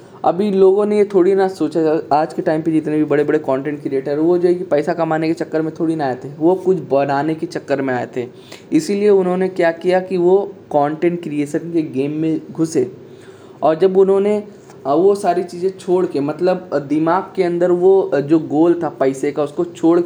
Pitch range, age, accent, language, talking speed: 145-185 Hz, 10-29, native, Hindi, 210 wpm